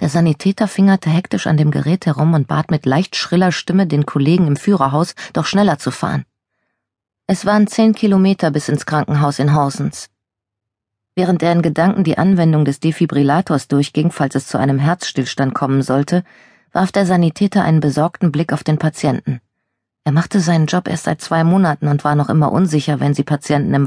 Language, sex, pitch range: German, female, 140-175 Hz